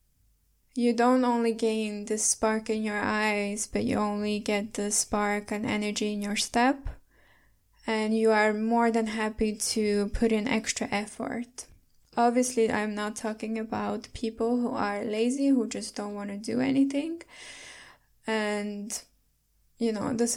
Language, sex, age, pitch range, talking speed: English, female, 10-29, 215-240 Hz, 150 wpm